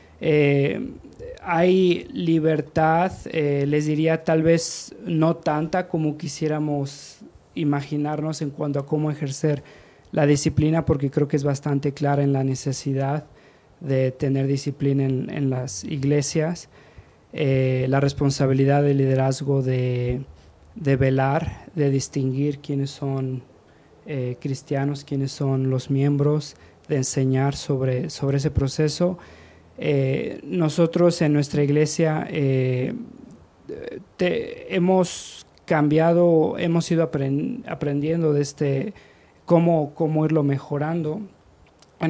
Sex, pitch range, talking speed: male, 140-160 Hz, 115 wpm